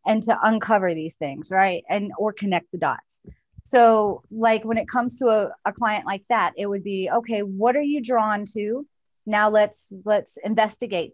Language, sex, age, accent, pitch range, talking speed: English, female, 30-49, American, 195-235 Hz, 190 wpm